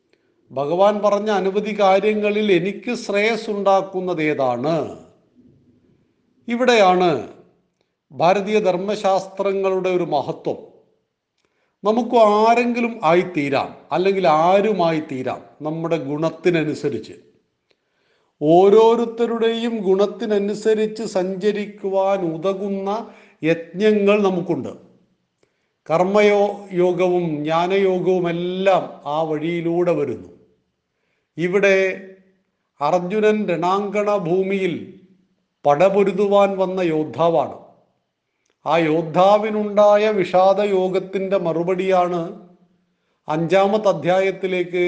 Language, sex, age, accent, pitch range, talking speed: Malayalam, male, 40-59, native, 170-210 Hz, 60 wpm